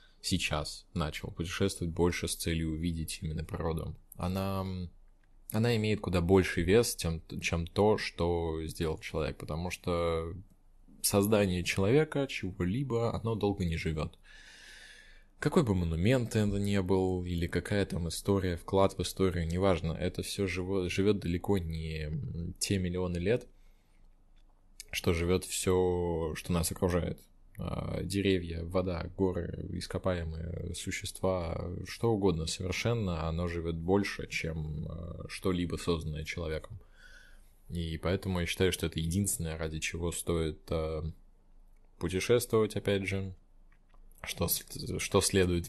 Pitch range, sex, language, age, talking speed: 85-100 Hz, male, Russian, 20-39, 115 wpm